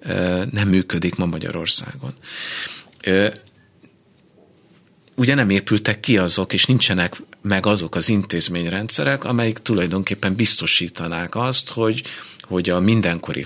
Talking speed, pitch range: 105 wpm, 90-110 Hz